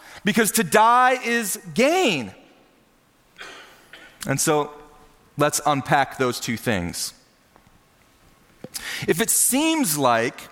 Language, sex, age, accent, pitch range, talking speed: English, male, 30-49, American, 135-195 Hz, 90 wpm